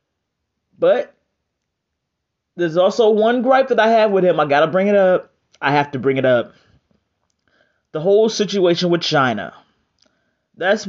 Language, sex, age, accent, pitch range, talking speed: English, male, 30-49, American, 145-195 Hz, 155 wpm